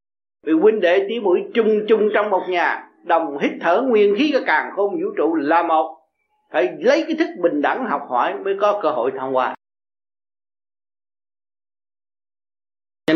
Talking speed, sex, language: 165 wpm, male, Vietnamese